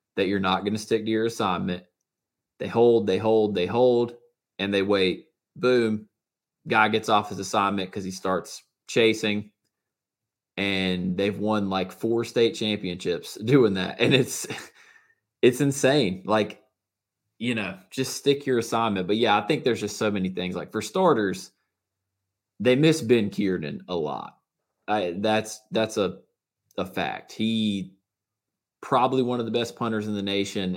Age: 20-39